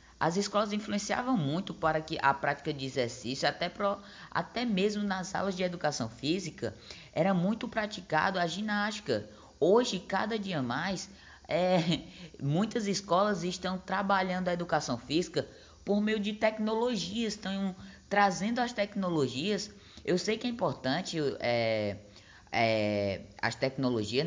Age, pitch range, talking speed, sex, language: 10-29, 145-200 Hz, 120 wpm, female, Portuguese